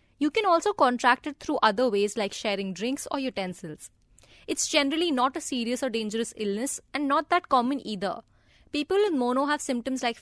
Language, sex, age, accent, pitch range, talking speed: English, female, 20-39, Indian, 220-285 Hz, 190 wpm